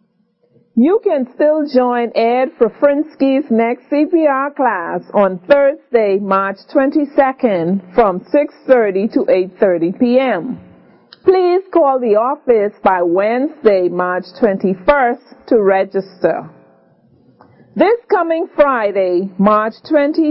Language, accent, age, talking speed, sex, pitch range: English, American, 40-59, 95 wpm, female, 210-290 Hz